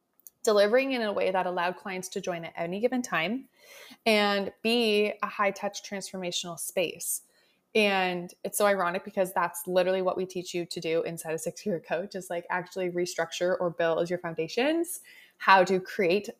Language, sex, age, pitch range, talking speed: English, female, 20-39, 180-240 Hz, 185 wpm